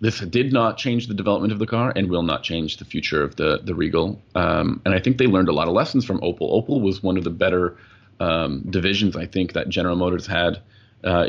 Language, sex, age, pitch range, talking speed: English, male, 30-49, 90-115 Hz, 245 wpm